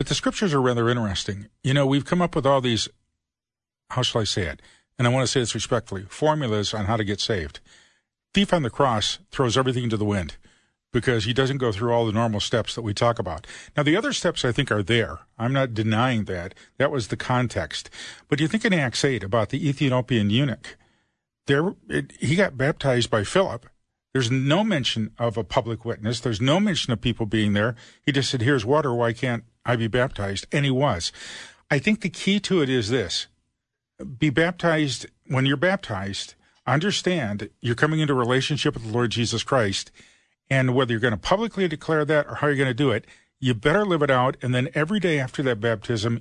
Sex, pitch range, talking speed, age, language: male, 115-145 Hz, 215 wpm, 50-69, English